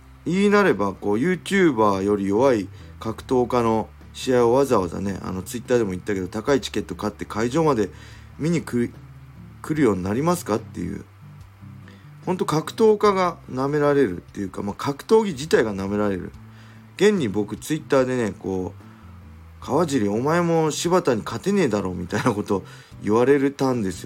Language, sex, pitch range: Japanese, male, 95-140 Hz